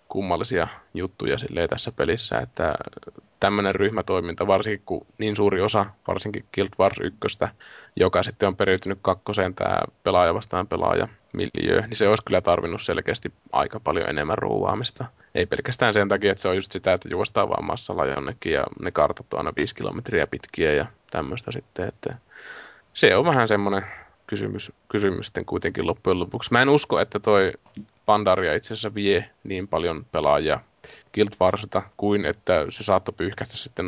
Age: 20-39